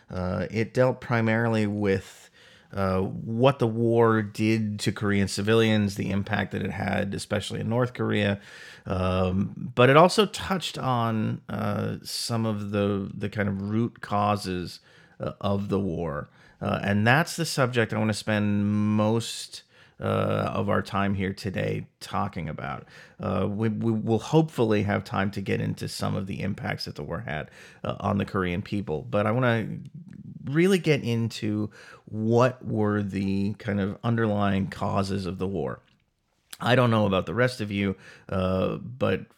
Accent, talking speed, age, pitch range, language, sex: American, 165 wpm, 40-59, 100-115 Hz, English, male